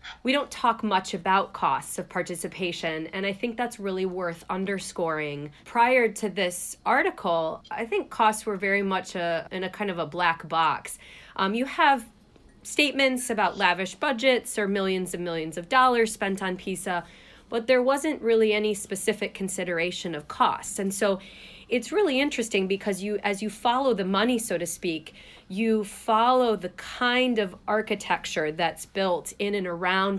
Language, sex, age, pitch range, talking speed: English, female, 30-49, 180-225 Hz, 165 wpm